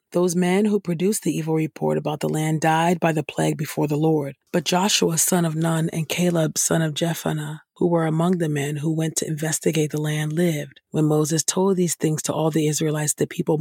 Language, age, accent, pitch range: English, 40-59, American, 155-180 Hz